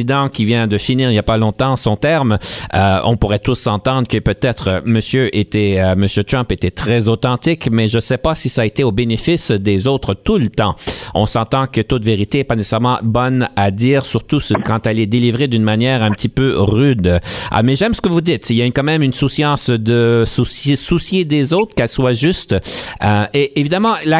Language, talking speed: French, 220 wpm